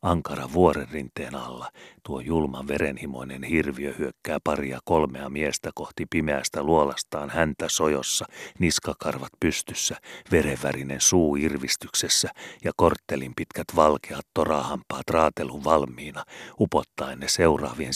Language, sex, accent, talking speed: Finnish, male, native, 105 wpm